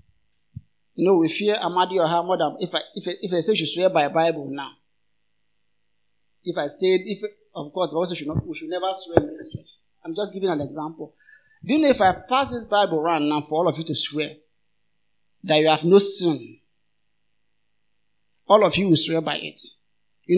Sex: male